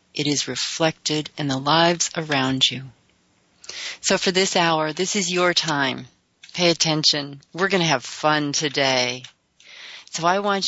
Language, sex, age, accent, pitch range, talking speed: English, female, 40-59, American, 155-210 Hz, 150 wpm